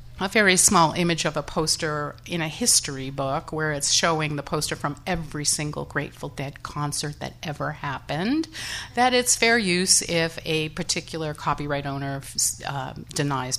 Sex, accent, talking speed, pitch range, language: female, American, 160 wpm, 150-210 Hz, English